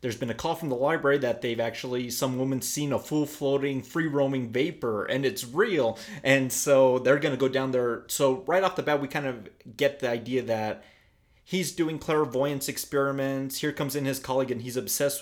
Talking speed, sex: 210 wpm, male